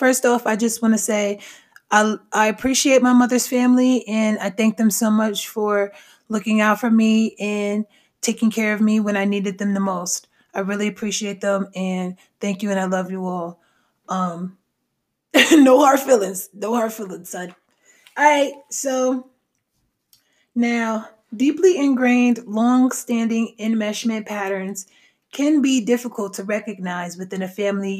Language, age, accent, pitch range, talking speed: English, 20-39, American, 200-245 Hz, 155 wpm